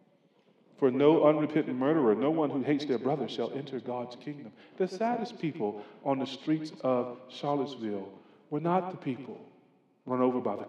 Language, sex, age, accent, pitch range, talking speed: English, male, 40-59, American, 130-175 Hz, 170 wpm